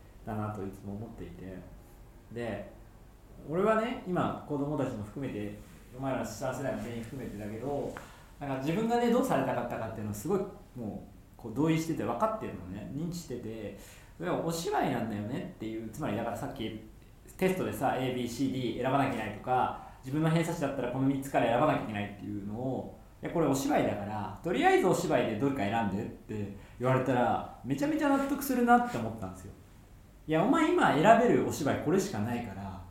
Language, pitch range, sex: Japanese, 100-160 Hz, male